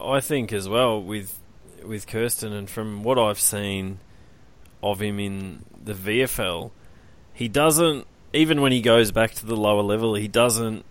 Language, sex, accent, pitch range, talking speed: English, male, Australian, 100-115 Hz, 165 wpm